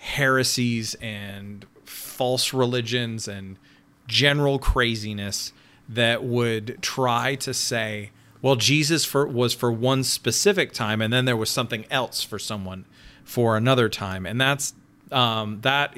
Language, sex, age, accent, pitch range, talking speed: English, male, 30-49, American, 110-140 Hz, 130 wpm